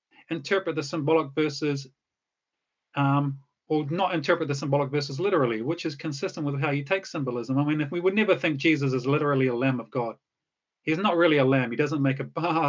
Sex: male